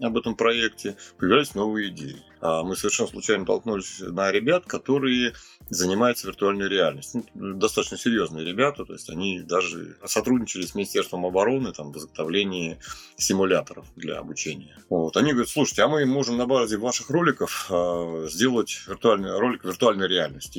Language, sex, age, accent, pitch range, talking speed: Russian, male, 30-49, native, 85-125 Hz, 145 wpm